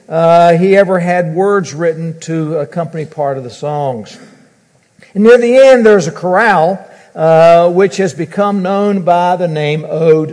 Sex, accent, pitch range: male, American, 155-195 Hz